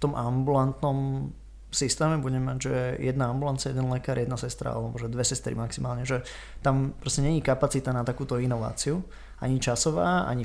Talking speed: 160 wpm